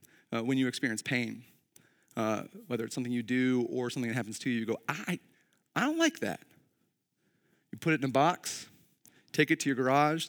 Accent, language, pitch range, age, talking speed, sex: American, English, 135-200 Hz, 30-49, 205 wpm, male